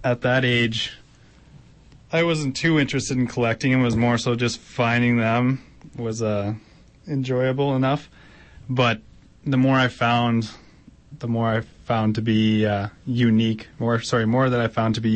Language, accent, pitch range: English, American, 110-125 Hz